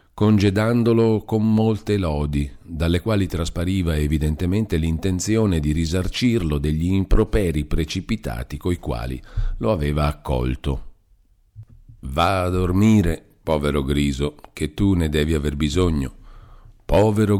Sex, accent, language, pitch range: male, native, Italian, 75-105 Hz